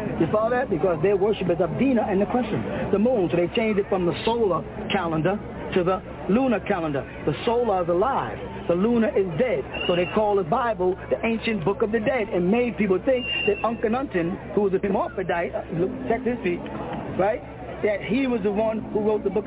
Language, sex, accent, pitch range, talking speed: English, male, American, 190-230 Hz, 205 wpm